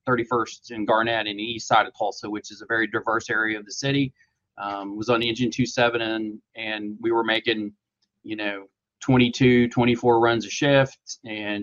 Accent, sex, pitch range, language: American, male, 110-125 Hz, English